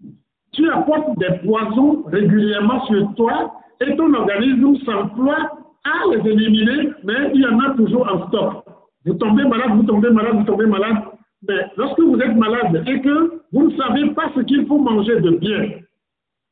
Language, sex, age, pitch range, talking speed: French, male, 50-69, 195-265 Hz, 175 wpm